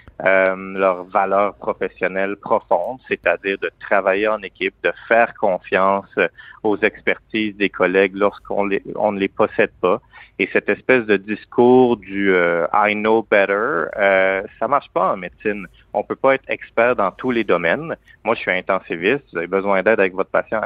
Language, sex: French, male